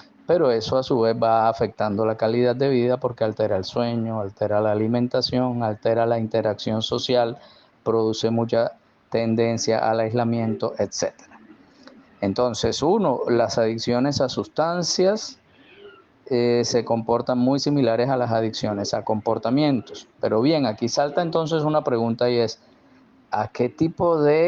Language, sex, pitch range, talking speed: Spanish, male, 110-125 Hz, 140 wpm